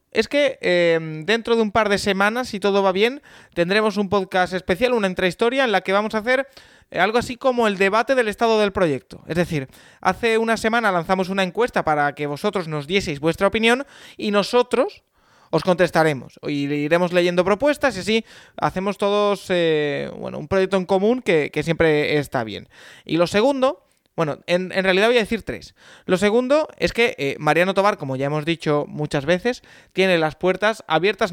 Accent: Spanish